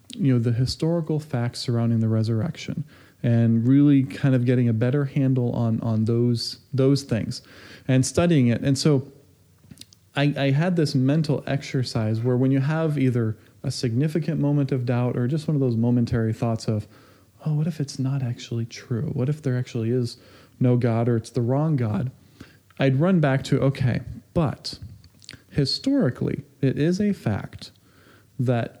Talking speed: 170 wpm